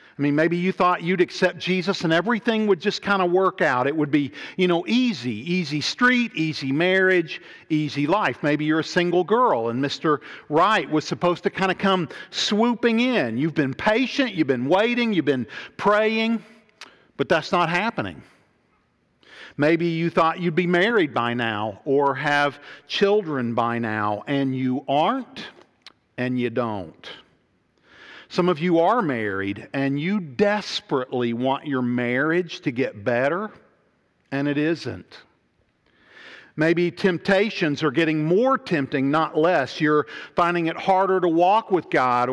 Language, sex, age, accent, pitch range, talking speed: English, male, 50-69, American, 135-185 Hz, 155 wpm